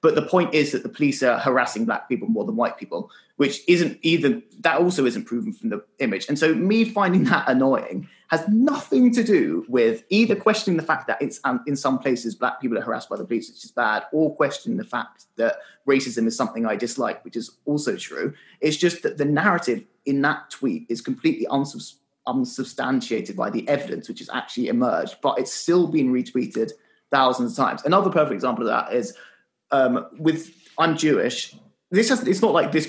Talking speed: 205 wpm